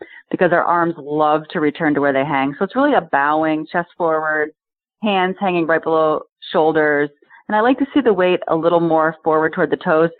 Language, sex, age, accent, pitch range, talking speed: English, female, 30-49, American, 145-185 Hz, 210 wpm